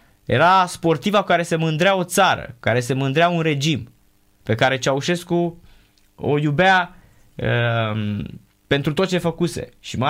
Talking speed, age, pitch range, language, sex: 145 wpm, 20-39, 110-155 Hz, Romanian, male